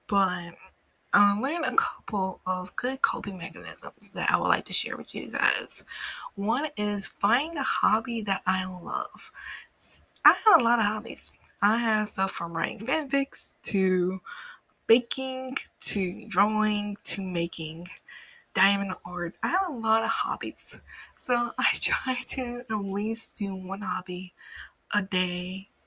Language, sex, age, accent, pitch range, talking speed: English, female, 20-39, American, 185-225 Hz, 145 wpm